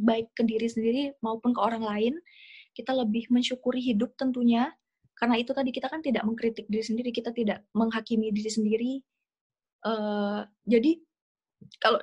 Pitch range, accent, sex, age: 225-255 Hz, native, female, 20-39